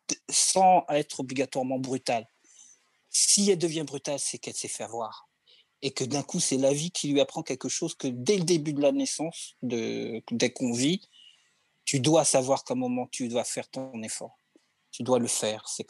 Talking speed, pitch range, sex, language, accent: 195 wpm, 120-145 Hz, male, French, French